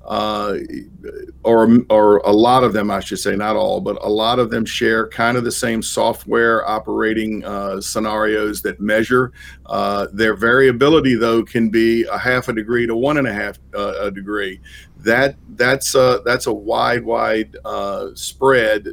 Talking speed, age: 175 wpm, 50-69